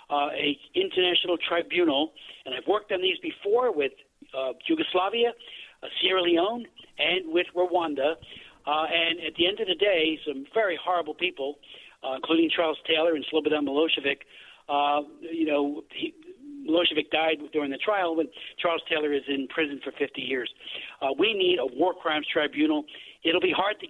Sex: male